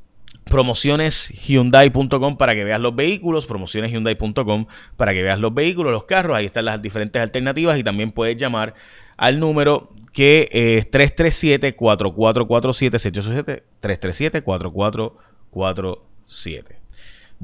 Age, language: 30-49, Spanish